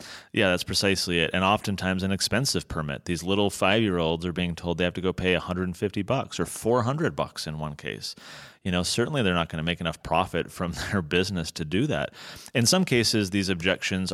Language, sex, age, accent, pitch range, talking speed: English, male, 30-49, American, 85-100 Hz, 210 wpm